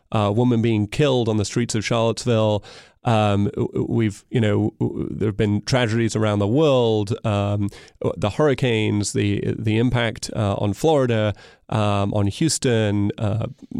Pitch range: 110-130 Hz